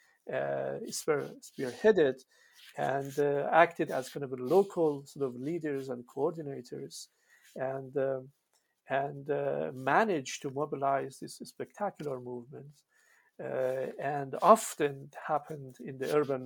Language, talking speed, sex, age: English, 110 wpm, male, 50-69